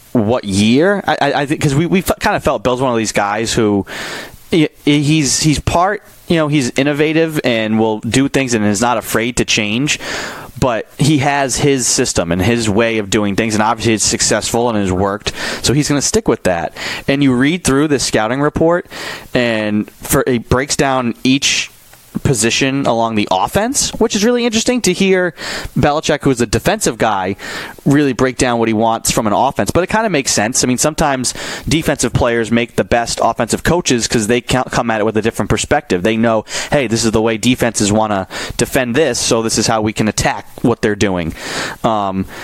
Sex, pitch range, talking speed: male, 110-145 Hz, 205 wpm